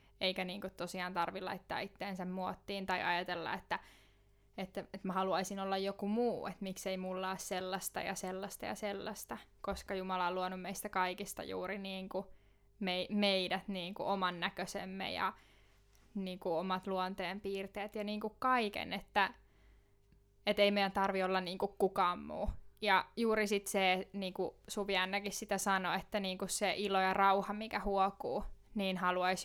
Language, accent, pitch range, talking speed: Finnish, native, 185-205 Hz, 155 wpm